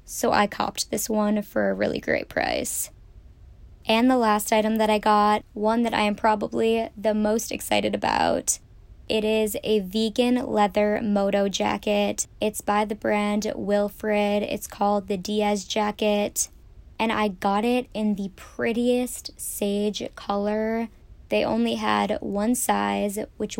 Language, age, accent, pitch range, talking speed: English, 10-29, American, 205-225 Hz, 150 wpm